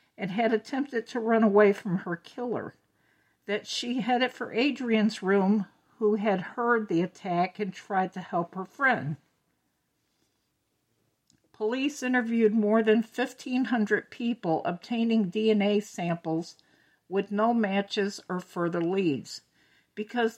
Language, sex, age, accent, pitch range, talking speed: English, female, 60-79, American, 180-225 Hz, 125 wpm